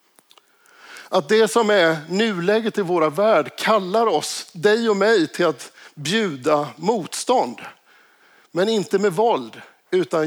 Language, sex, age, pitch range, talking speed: Swedish, male, 50-69, 155-210 Hz, 130 wpm